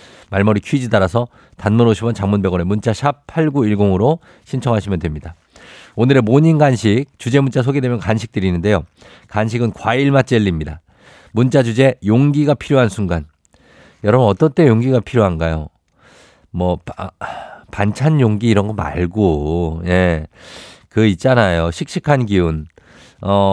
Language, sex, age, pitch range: Korean, male, 50-69, 100-140 Hz